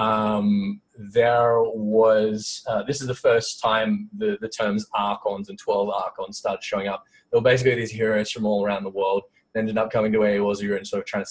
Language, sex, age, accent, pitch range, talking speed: English, male, 20-39, Australian, 105-130 Hz, 220 wpm